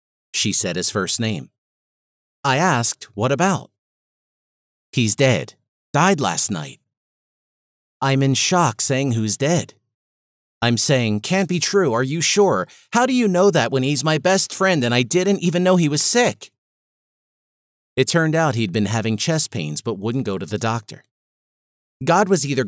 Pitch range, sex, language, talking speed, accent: 110-160 Hz, male, English, 165 wpm, American